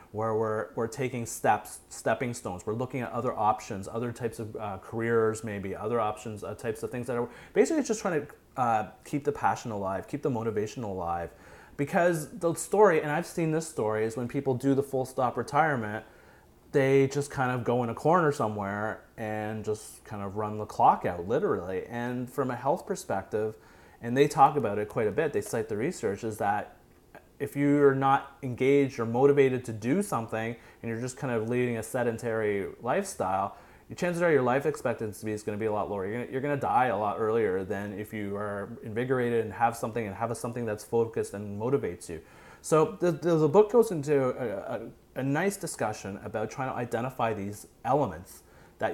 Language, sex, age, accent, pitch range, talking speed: English, male, 30-49, American, 110-140 Hz, 205 wpm